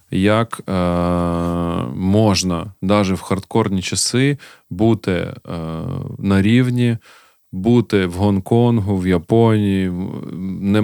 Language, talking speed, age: Ukrainian, 95 wpm, 20-39